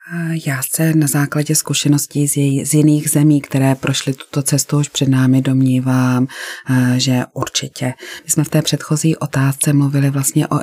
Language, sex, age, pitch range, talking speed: Czech, female, 30-49, 130-145 Hz, 150 wpm